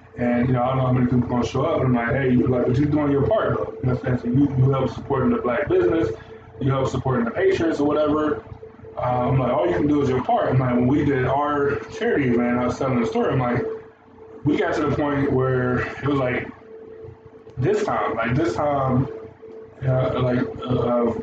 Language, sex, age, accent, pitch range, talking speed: English, male, 20-39, American, 120-145 Hz, 245 wpm